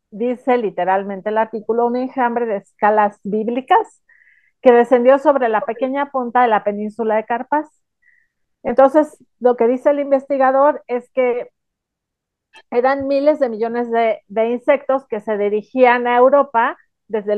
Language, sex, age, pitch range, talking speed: Spanish, female, 40-59, 220-270 Hz, 140 wpm